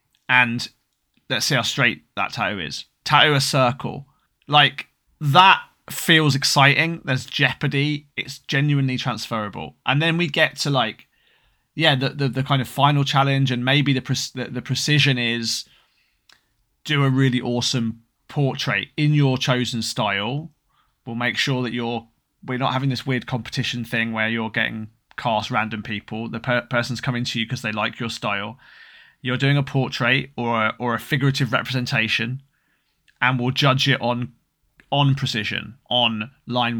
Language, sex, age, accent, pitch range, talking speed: English, male, 20-39, British, 115-140 Hz, 160 wpm